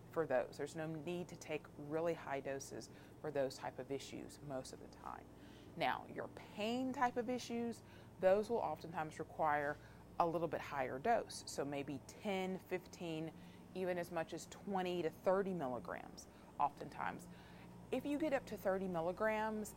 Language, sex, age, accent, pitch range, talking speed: English, female, 30-49, American, 145-195 Hz, 165 wpm